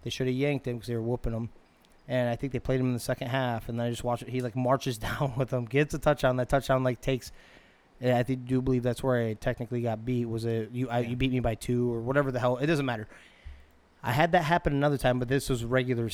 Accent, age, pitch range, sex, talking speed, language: American, 20-39, 120-135 Hz, male, 280 wpm, English